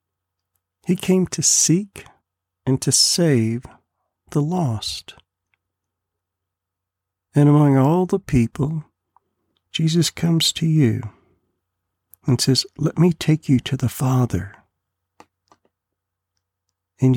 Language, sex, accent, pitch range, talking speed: English, male, American, 95-145 Hz, 100 wpm